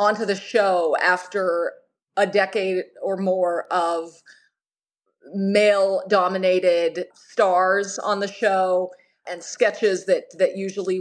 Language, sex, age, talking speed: English, female, 30-49, 105 wpm